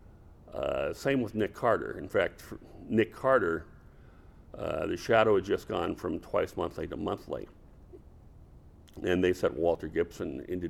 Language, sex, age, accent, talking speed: English, male, 60-79, American, 145 wpm